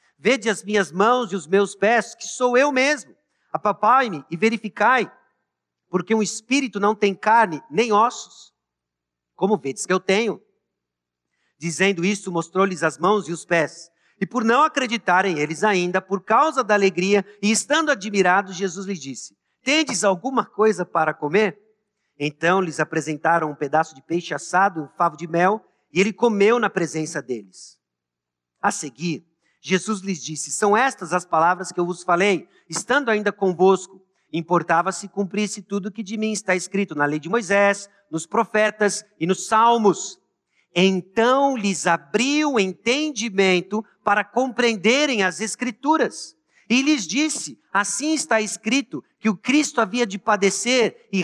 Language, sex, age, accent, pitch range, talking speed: Portuguese, male, 50-69, Brazilian, 180-225 Hz, 155 wpm